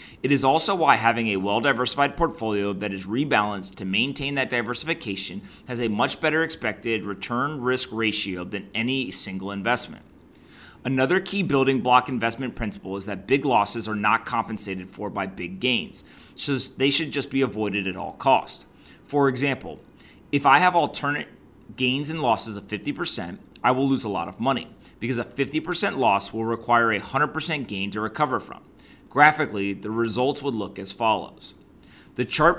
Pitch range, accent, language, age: 105-135 Hz, American, English, 30-49